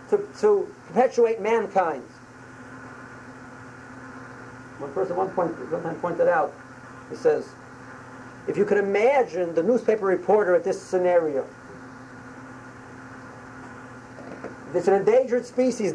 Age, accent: 50-69, American